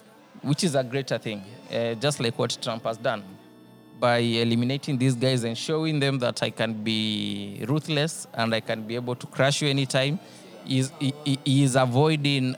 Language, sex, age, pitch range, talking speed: English, male, 20-39, 115-140 Hz, 175 wpm